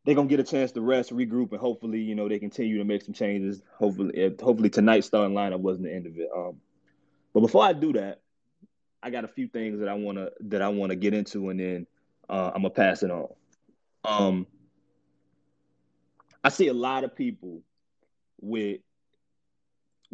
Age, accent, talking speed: 20-39, American, 190 wpm